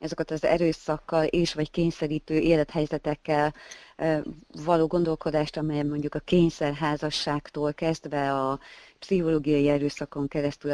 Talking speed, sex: 100 wpm, female